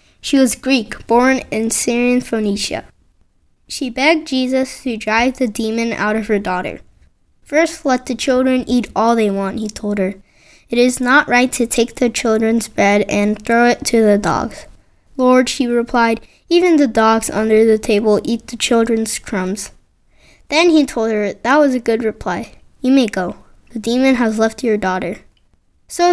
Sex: female